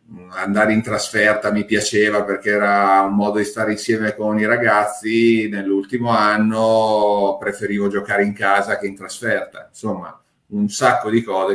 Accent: native